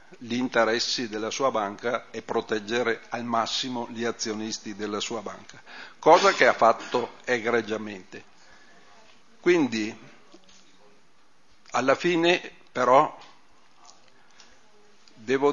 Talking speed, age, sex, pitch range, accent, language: 95 wpm, 50-69, male, 115-145 Hz, Italian, Czech